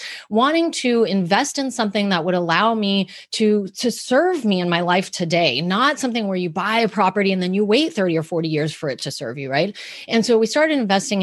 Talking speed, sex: 230 wpm, female